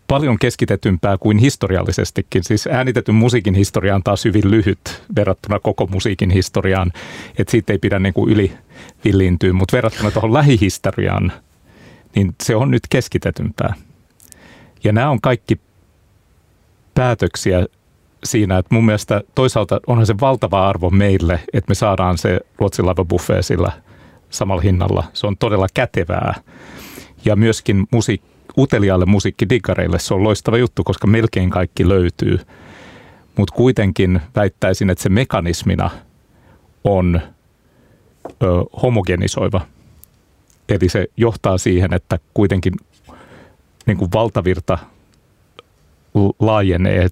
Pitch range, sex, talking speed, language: 95-110 Hz, male, 120 wpm, Finnish